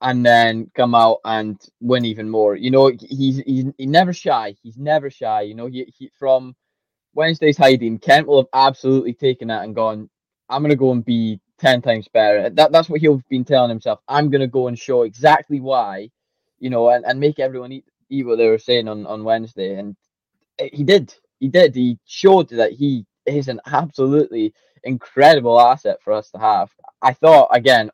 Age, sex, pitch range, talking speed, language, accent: 10-29, male, 115-150 Hz, 200 wpm, English, British